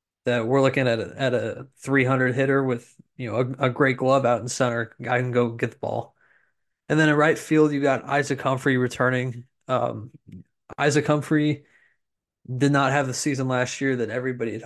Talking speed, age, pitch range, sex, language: 200 wpm, 20-39, 125-140 Hz, male, English